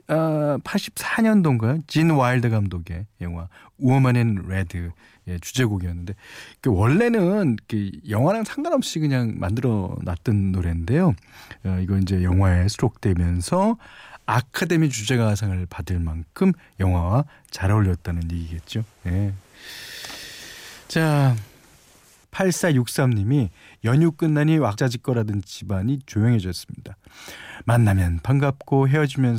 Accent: native